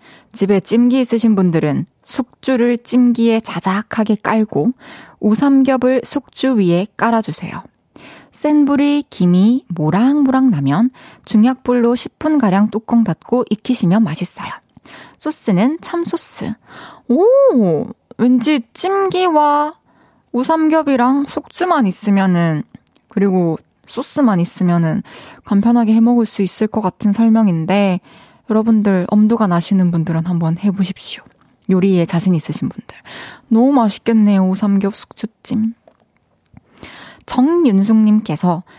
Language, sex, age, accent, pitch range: Korean, female, 20-39, native, 195-260 Hz